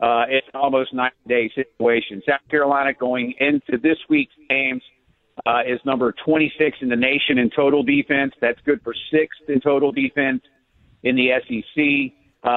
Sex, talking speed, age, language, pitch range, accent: male, 160 wpm, 50-69, English, 135-165 Hz, American